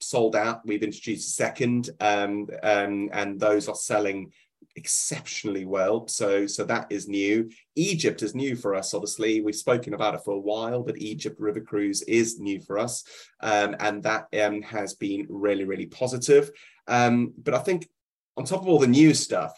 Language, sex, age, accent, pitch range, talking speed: English, male, 30-49, British, 105-125 Hz, 185 wpm